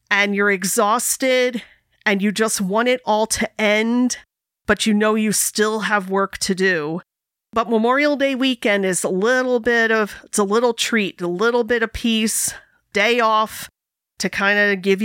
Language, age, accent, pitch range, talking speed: English, 40-59, American, 190-220 Hz, 175 wpm